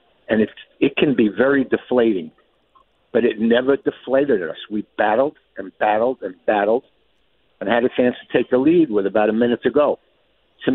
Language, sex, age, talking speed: English, male, 60-79, 185 wpm